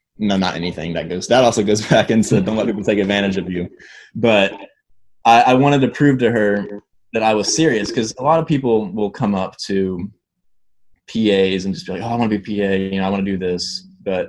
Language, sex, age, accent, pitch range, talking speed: English, male, 20-39, American, 90-105 Hz, 240 wpm